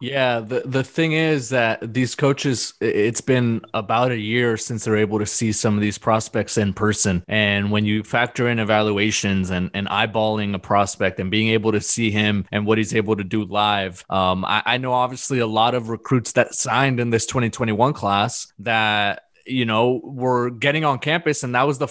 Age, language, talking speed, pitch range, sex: 20-39, English, 210 wpm, 110-125 Hz, male